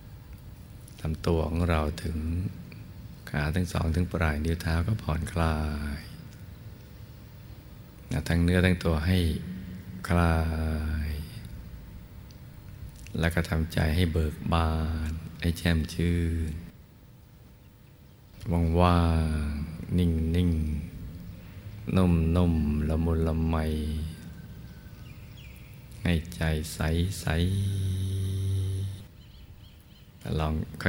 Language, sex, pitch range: Thai, male, 80-95 Hz